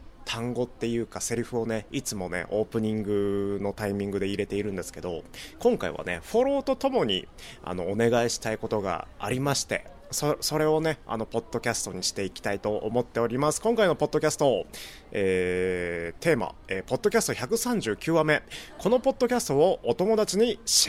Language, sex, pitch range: Japanese, male, 100-155 Hz